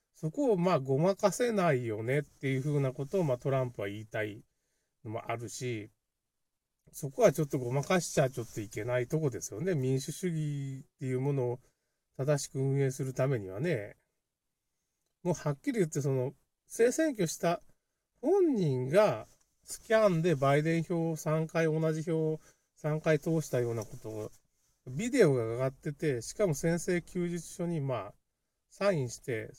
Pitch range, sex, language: 120-170 Hz, male, Japanese